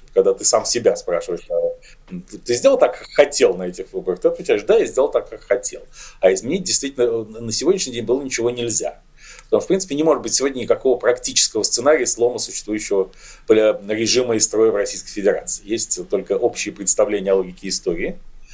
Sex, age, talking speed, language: male, 40-59, 180 wpm, Russian